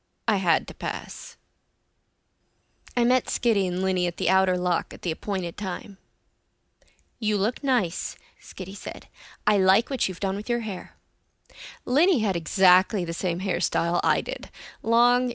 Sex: female